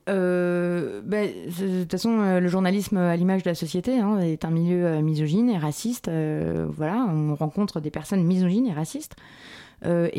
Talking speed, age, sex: 170 wpm, 20-39, female